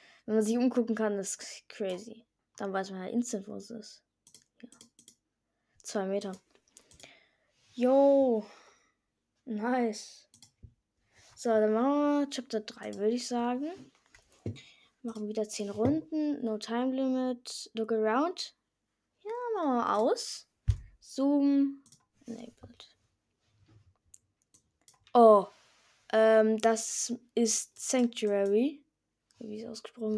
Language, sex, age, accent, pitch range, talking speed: German, female, 10-29, German, 210-265 Hz, 105 wpm